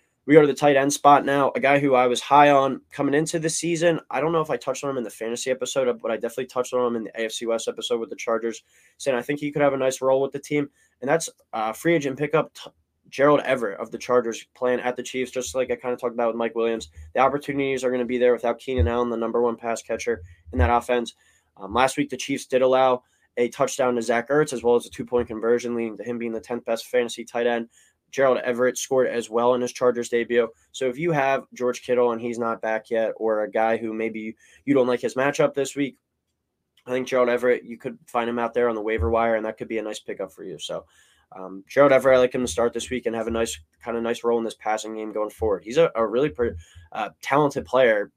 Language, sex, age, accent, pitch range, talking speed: English, male, 20-39, American, 115-135 Hz, 270 wpm